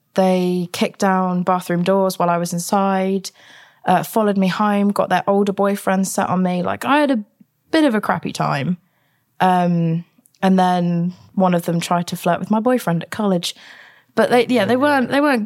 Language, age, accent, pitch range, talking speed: English, 20-39, British, 165-185 Hz, 185 wpm